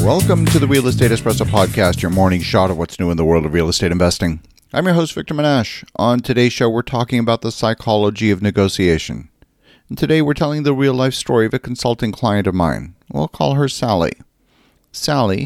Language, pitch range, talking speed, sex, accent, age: English, 105-130 Hz, 205 wpm, male, American, 40-59